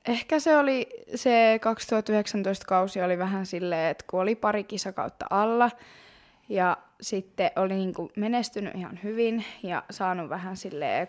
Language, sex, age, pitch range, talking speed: Finnish, female, 20-39, 180-230 Hz, 150 wpm